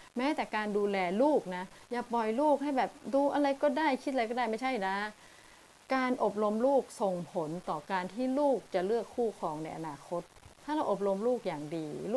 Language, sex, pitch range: Thai, female, 180-245 Hz